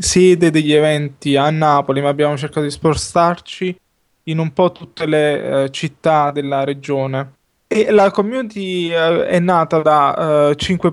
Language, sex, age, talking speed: Italian, male, 20-39, 130 wpm